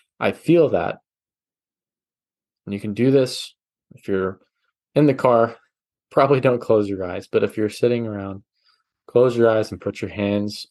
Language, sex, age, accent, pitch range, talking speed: English, male, 20-39, American, 105-125 Hz, 170 wpm